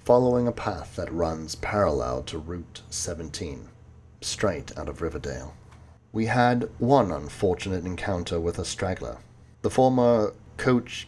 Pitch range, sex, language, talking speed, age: 90-110 Hz, male, English, 130 wpm, 40-59